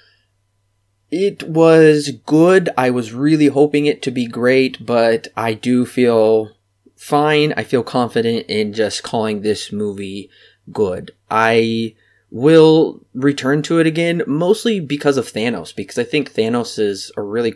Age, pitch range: 20-39, 105-140 Hz